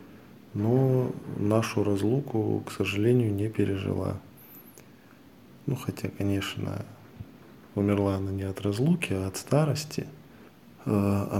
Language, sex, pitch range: Russian, male, 95-110 Hz